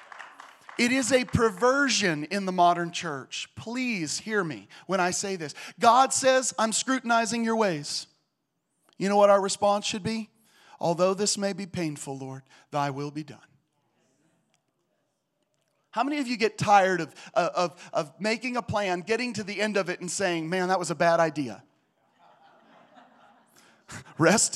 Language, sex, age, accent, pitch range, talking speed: English, male, 40-59, American, 145-210 Hz, 155 wpm